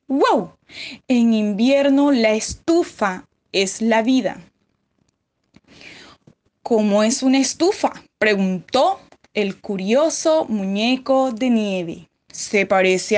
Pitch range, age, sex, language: 210-290 Hz, 10-29, female, Spanish